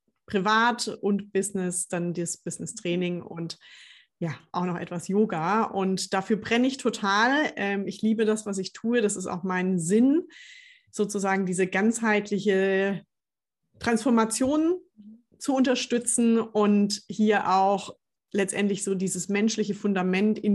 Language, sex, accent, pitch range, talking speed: German, female, German, 190-225 Hz, 125 wpm